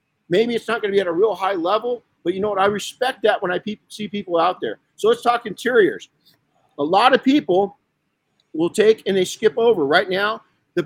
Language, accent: English, American